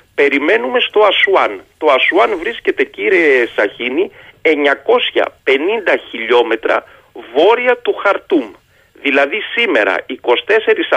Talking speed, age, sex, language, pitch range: 90 wpm, 40-59, male, Greek, 290-435 Hz